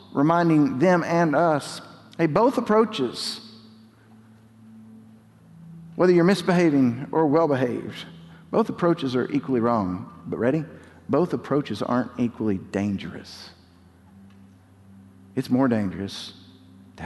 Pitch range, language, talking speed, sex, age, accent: 100-155 Hz, English, 100 wpm, male, 50-69, American